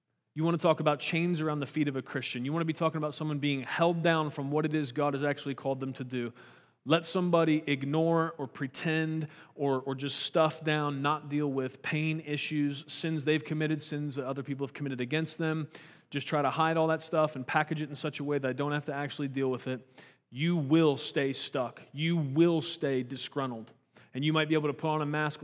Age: 30-49